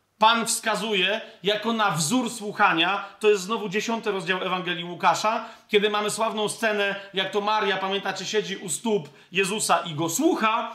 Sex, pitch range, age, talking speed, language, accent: male, 185-220 Hz, 40-59, 155 wpm, Polish, native